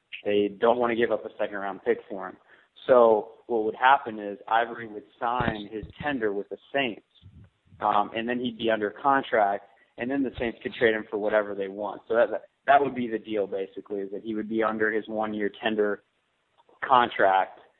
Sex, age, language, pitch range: male, 30-49, English, 105-125 Hz